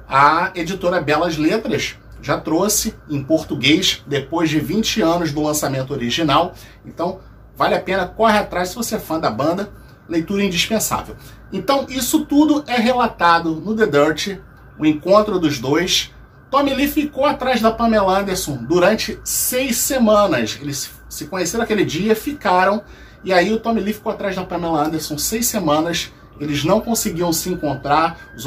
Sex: male